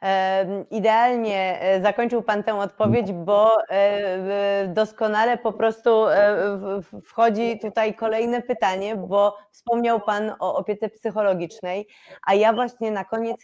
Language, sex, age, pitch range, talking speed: Polish, female, 30-49, 185-220 Hz, 105 wpm